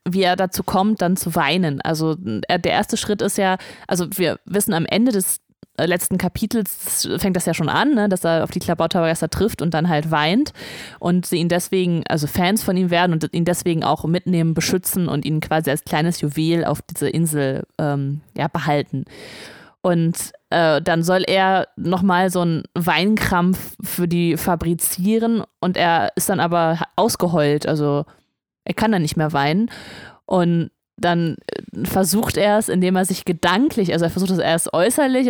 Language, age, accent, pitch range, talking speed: German, 20-39, German, 165-190 Hz, 175 wpm